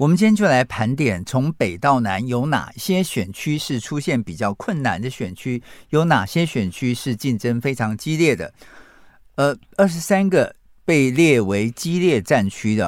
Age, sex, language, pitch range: 50-69, male, Chinese, 110-155 Hz